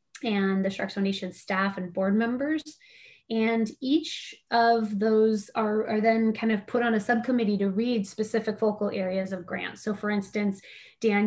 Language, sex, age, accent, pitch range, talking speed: English, female, 20-39, American, 210-245 Hz, 170 wpm